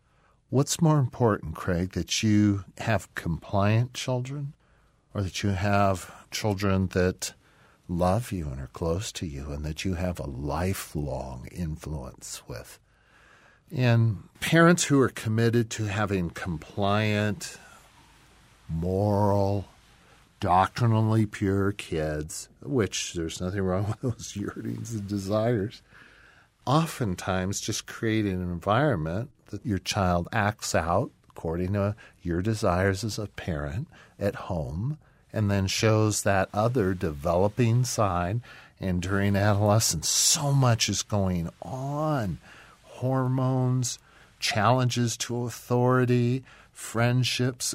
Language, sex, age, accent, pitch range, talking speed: English, male, 50-69, American, 90-120 Hz, 115 wpm